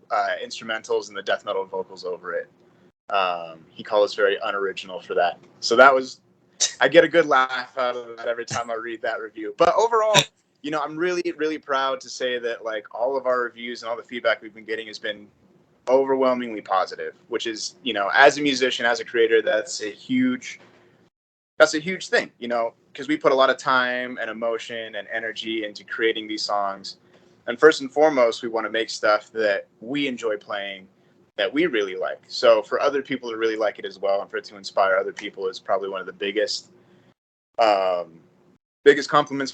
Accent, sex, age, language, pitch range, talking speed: American, male, 20-39, English, 115-190 Hz, 210 wpm